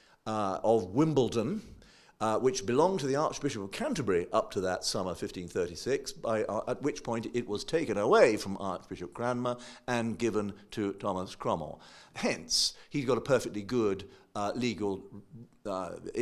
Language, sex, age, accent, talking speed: English, male, 50-69, British, 155 wpm